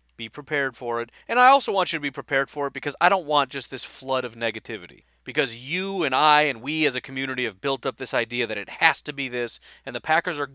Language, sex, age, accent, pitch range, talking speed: English, male, 40-59, American, 115-155 Hz, 265 wpm